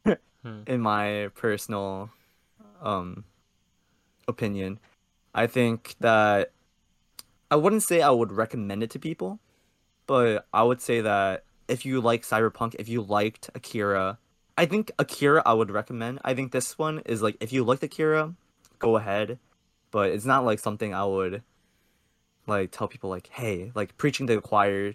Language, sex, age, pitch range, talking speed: English, male, 20-39, 100-125 Hz, 155 wpm